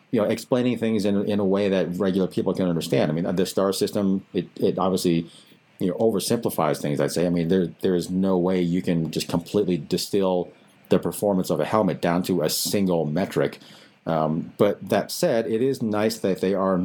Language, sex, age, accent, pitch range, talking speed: English, male, 40-59, American, 90-105 Hz, 210 wpm